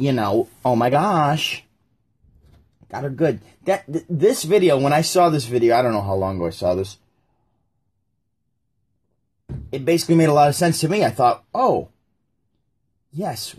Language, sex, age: English, male, 30-49